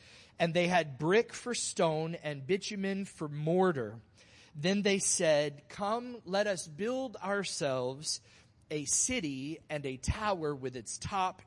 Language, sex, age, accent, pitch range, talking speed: English, male, 30-49, American, 135-195 Hz, 135 wpm